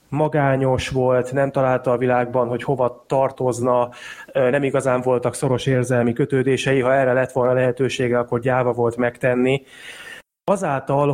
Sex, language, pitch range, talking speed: male, Hungarian, 130-150 Hz, 135 wpm